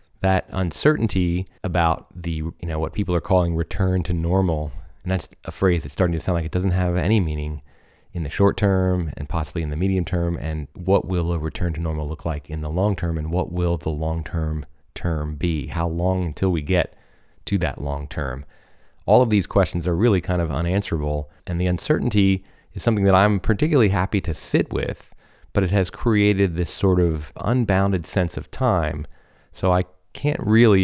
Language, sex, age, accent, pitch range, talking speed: English, male, 30-49, American, 80-95 Hz, 200 wpm